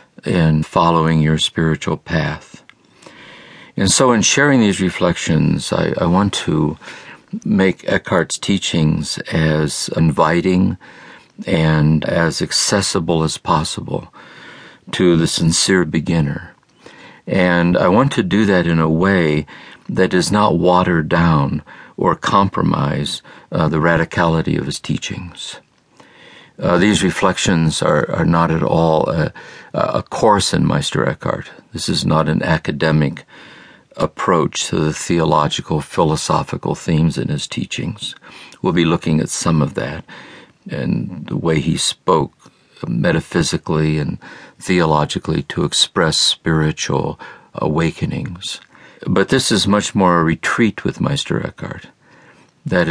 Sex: male